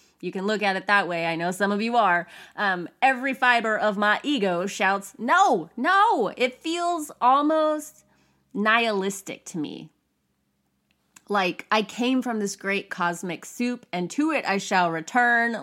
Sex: female